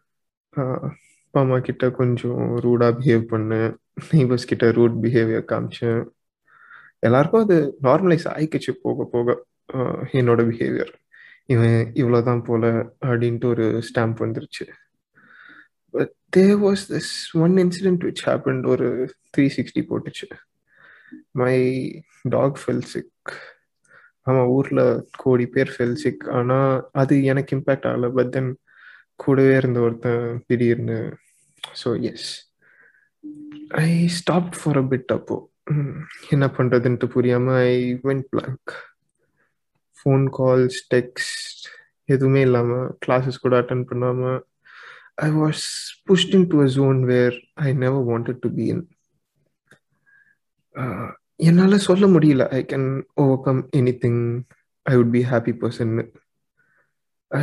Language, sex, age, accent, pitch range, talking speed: Tamil, male, 20-39, native, 120-150 Hz, 110 wpm